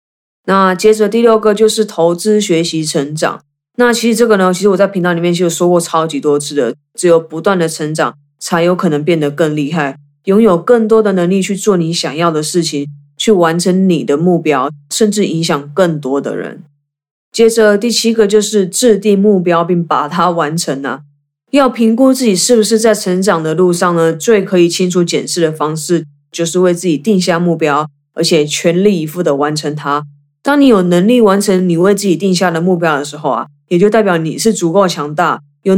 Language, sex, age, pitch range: Chinese, female, 20-39, 155-205 Hz